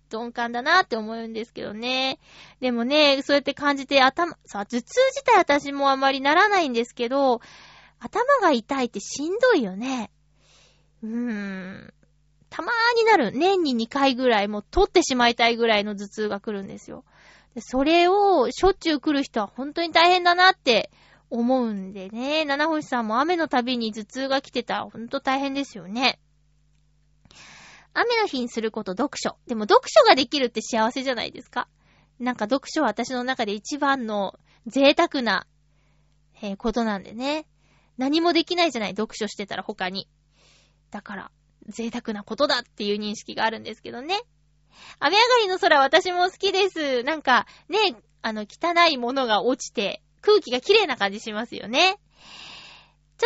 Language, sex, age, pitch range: Japanese, female, 20-39, 220-325 Hz